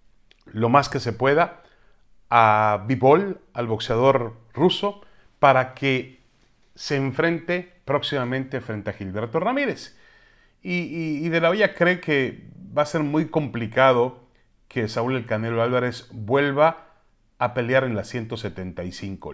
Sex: male